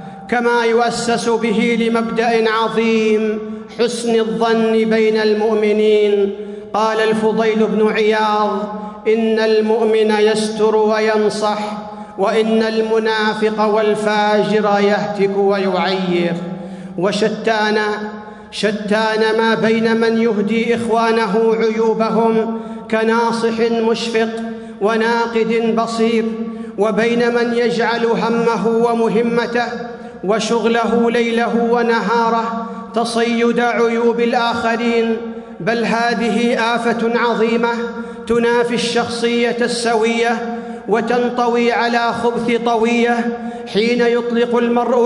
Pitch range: 220-235 Hz